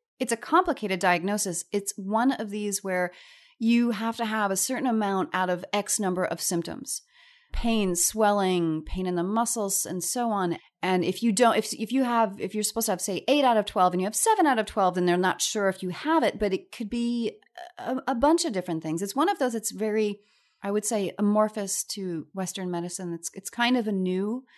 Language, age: English, 30-49